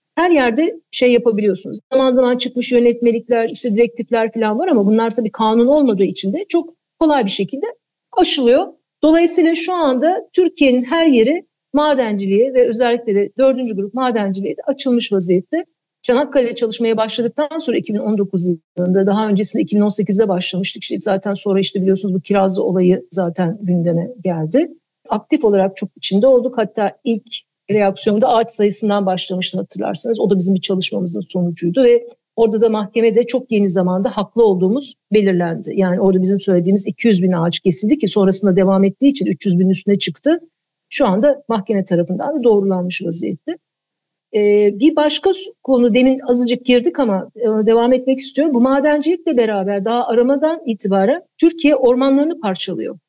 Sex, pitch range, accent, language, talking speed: female, 195-265 Hz, native, Turkish, 150 wpm